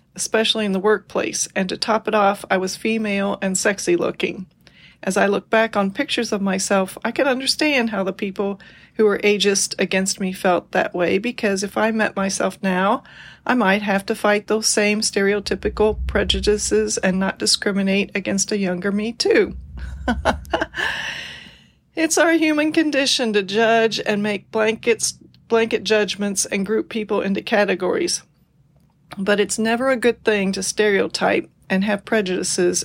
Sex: female